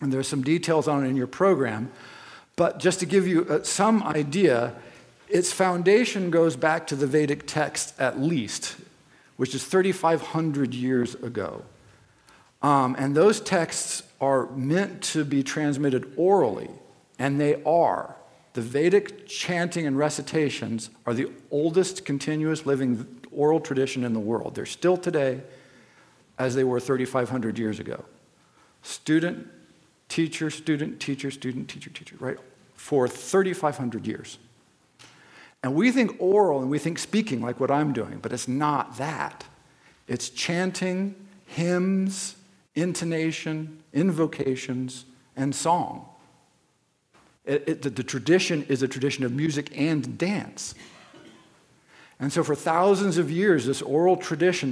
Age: 50-69